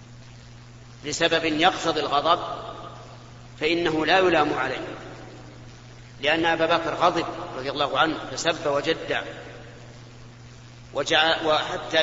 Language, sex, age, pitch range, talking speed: Arabic, male, 40-59, 120-165 Hz, 85 wpm